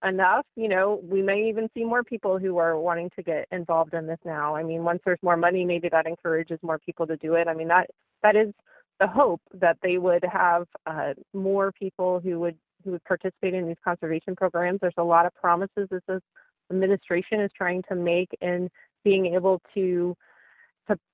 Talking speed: 200 wpm